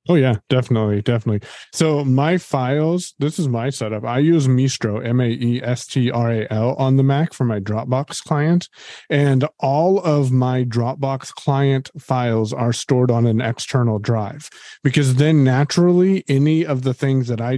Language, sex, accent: English, male, American